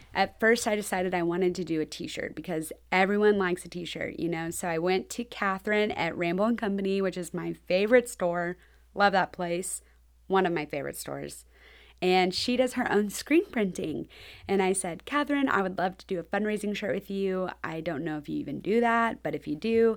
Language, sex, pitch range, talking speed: English, female, 175-220 Hz, 215 wpm